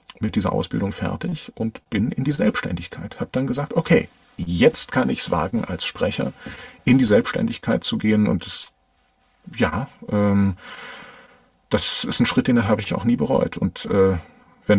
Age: 40-59